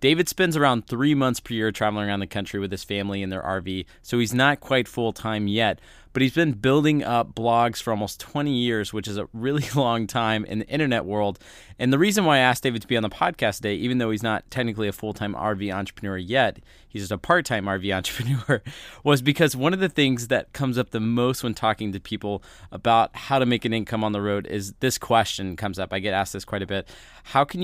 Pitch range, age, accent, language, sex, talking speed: 100-125 Hz, 20-39, American, English, male, 240 wpm